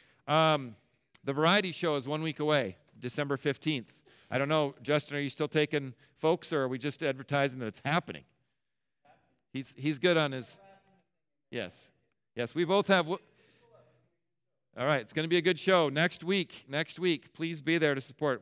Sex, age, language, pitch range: male, 40-59, English, 120-155 Hz